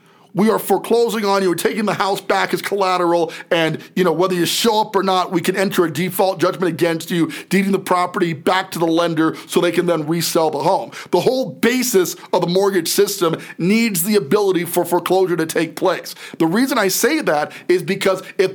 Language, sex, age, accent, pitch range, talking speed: English, male, 40-59, American, 175-220 Hz, 215 wpm